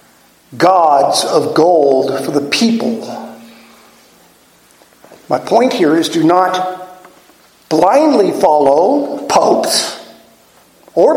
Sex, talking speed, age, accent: male, 85 wpm, 50-69, American